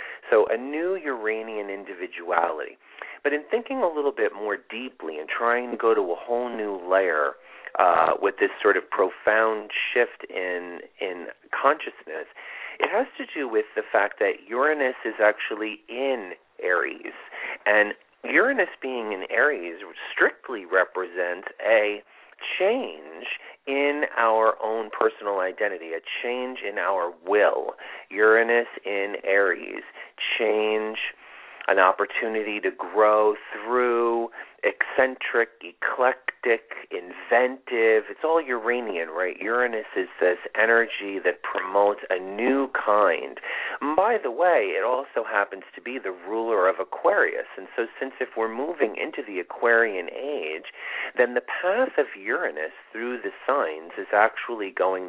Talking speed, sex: 135 wpm, male